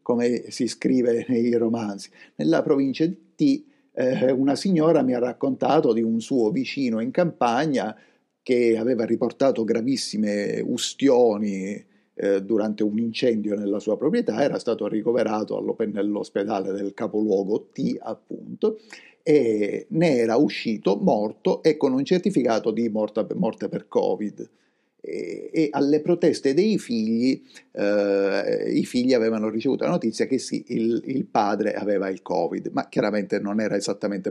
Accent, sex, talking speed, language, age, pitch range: native, male, 140 wpm, Italian, 50-69, 115-165 Hz